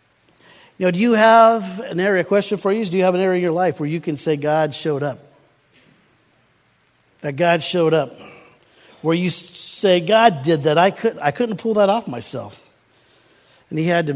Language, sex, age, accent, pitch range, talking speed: English, male, 50-69, American, 130-165 Hz, 210 wpm